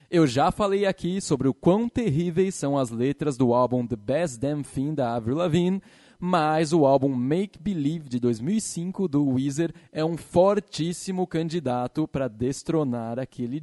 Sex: male